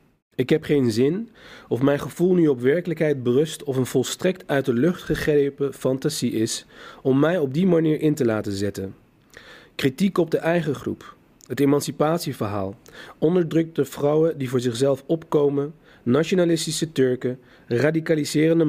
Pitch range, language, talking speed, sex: 120-155 Hz, Dutch, 145 wpm, male